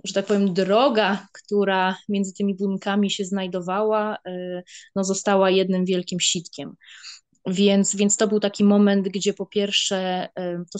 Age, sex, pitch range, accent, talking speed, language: 20-39, female, 175-200 Hz, native, 140 wpm, Polish